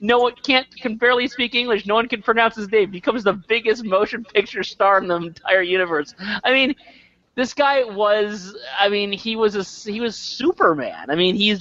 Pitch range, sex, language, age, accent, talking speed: 160-215 Hz, male, English, 30-49, American, 205 wpm